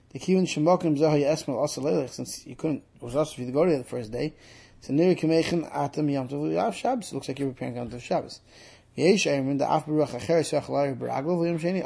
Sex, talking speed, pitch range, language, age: male, 90 wpm, 125-155 Hz, English, 20-39